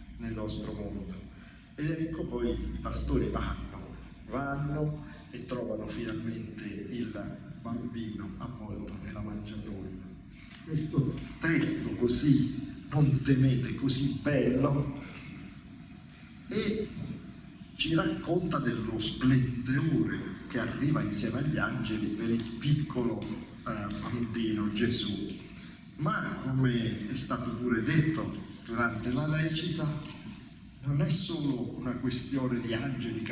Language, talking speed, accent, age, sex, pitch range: Italian, 105 wpm, native, 50-69, male, 110-150 Hz